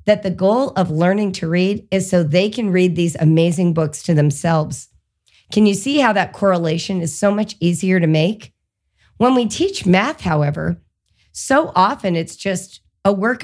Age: 40-59